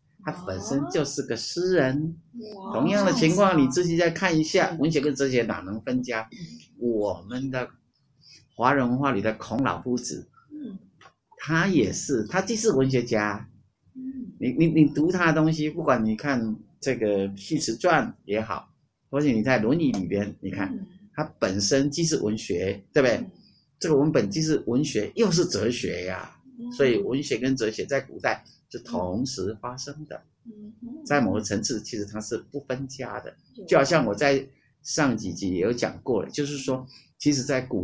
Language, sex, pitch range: Chinese, male, 115-170 Hz